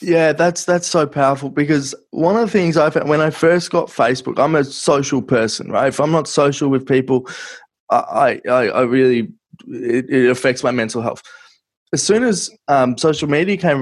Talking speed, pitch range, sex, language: 190 wpm, 120-155 Hz, male, English